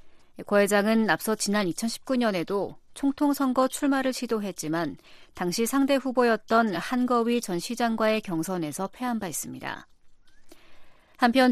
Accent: native